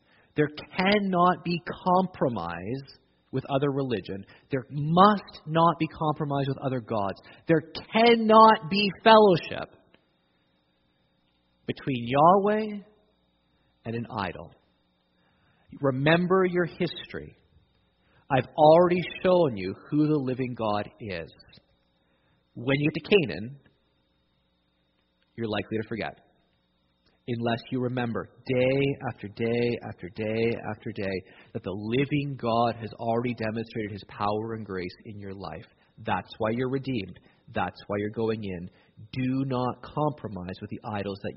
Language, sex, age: English, male, 40-59